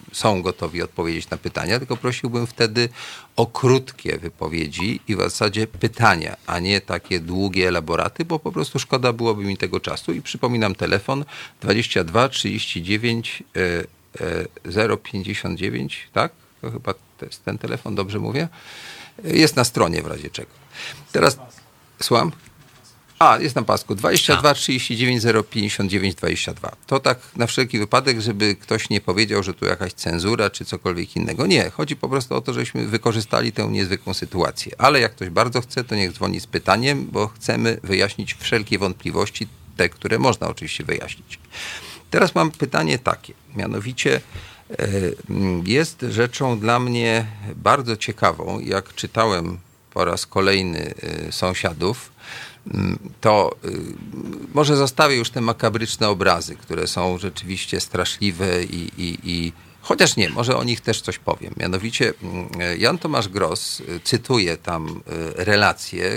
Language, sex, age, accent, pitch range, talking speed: Polish, male, 40-59, native, 95-125 Hz, 135 wpm